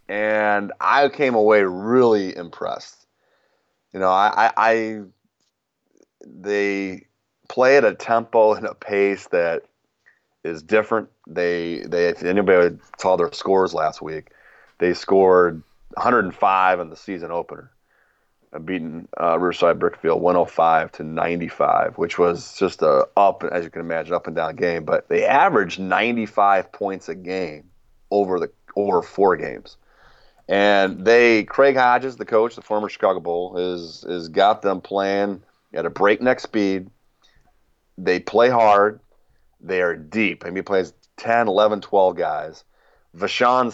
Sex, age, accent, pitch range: male, 30-49, American, 85-105 Hz